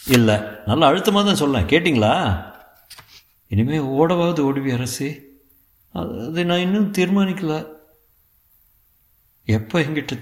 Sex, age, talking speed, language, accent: male, 50-69, 90 wpm, Tamil, native